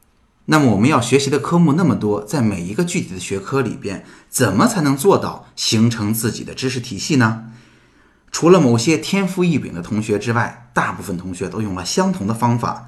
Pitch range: 100-135 Hz